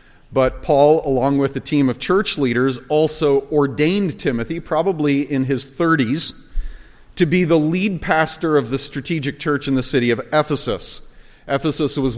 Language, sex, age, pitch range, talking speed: English, male, 40-59, 125-155 Hz, 160 wpm